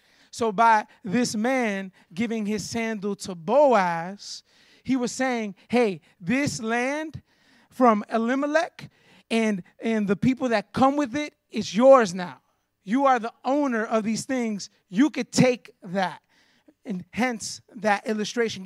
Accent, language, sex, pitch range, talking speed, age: American, English, male, 195-245 Hz, 140 wpm, 30-49